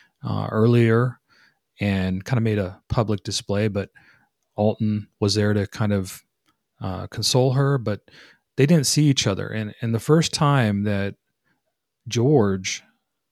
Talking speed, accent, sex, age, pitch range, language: 145 wpm, American, male, 30-49, 100-115 Hz, English